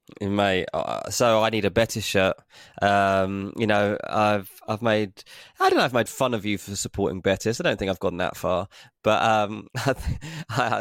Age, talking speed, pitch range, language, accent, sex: 20-39, 190 wpm, 100-115 Hz, English, British, male